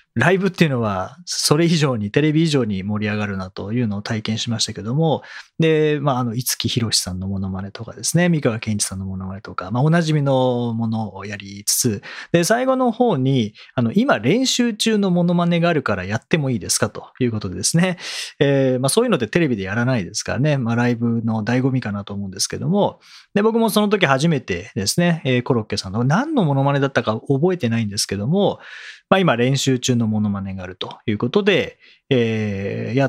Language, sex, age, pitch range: Japanese, male, 40-59, 110-170 Hz